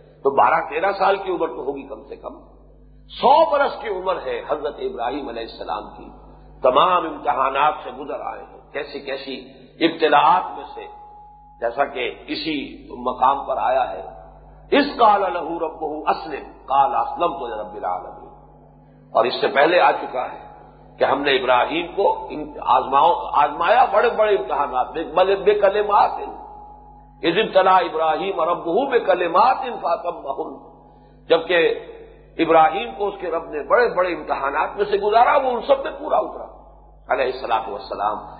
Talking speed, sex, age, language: 105 wpm, male, 50-69, English